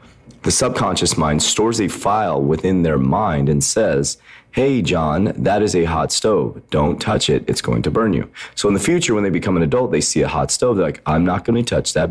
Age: 30-49